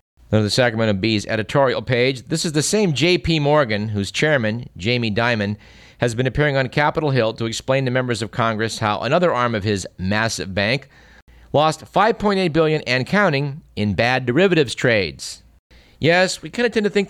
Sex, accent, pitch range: male, American, 105-140 Hz